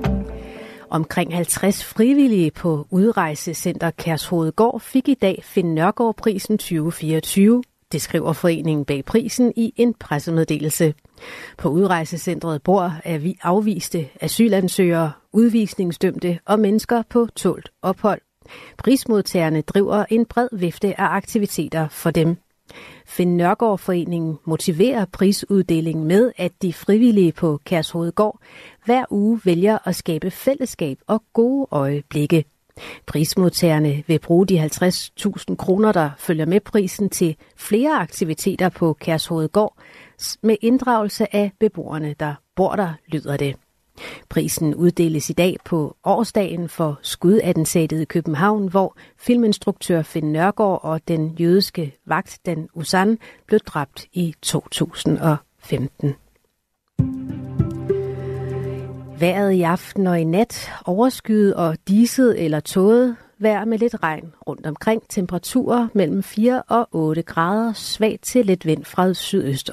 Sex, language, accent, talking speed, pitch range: female, Danish, native, 120 wpm, 160-210 Hz